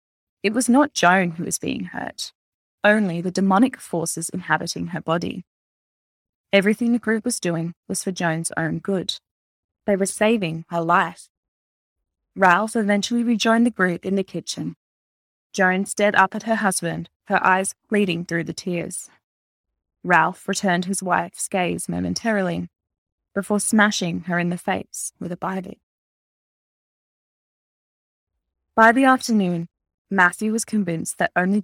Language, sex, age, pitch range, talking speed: English, female, 20-39, 165-205 Hz, 140 wpm